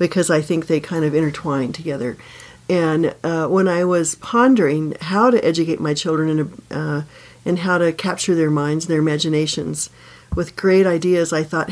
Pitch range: 155-185 Hz